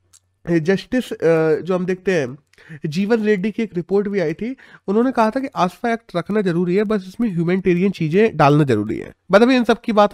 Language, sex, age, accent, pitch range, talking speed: Hindi, male, 30-49, native, 175-225 Hz, 195 wpm